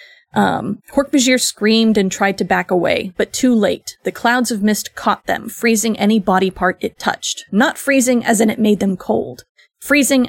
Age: 30-49